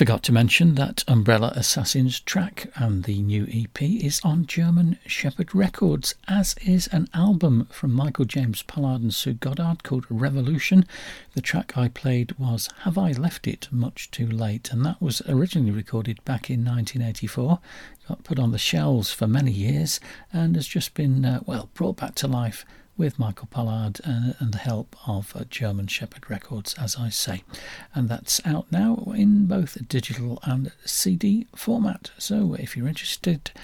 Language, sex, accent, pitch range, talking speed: English, male, British, 115-155 Hz, 170 wpm